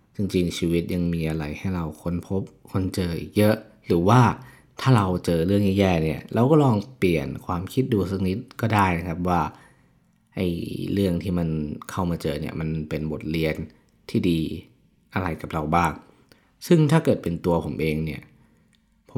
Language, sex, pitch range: Thai, male, 80-95 Hz